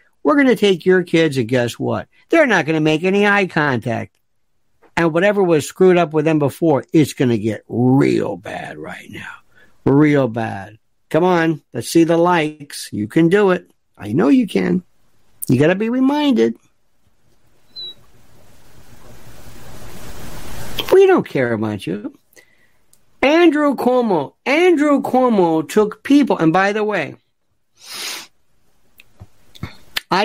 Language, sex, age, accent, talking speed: English, male, 60-79, American, 140 wpm